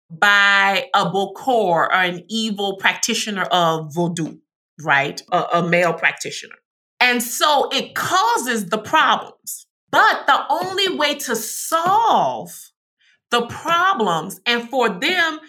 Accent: American